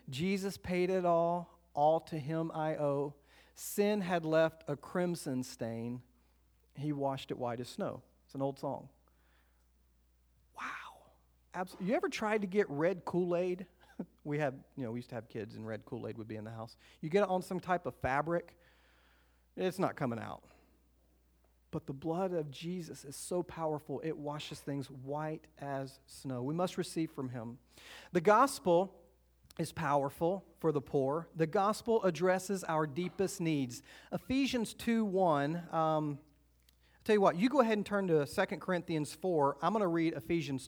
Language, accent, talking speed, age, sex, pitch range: English, American, 165 wpm, 40-59, male, 130-180 Hz